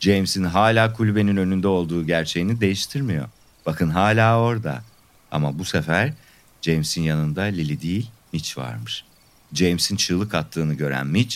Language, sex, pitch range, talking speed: Turkish, male, 80-105 Hz, 125 wpm